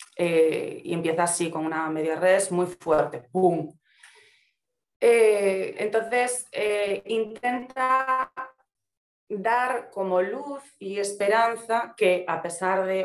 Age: 30-49